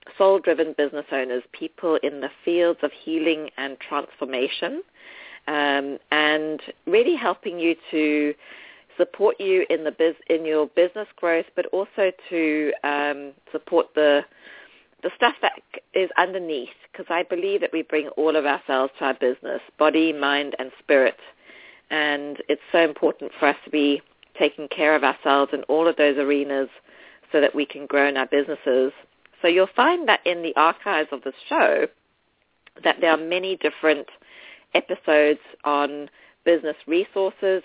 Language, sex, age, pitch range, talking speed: English, female, 40-59, 145-170 Hz, 155 wpm